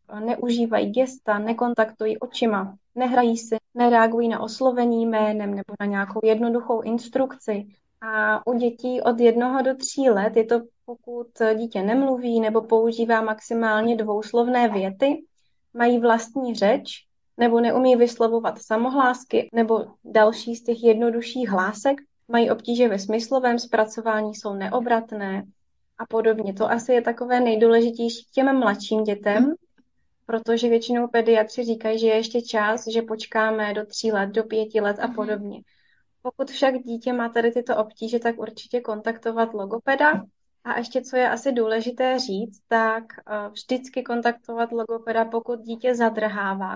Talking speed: 135 wpm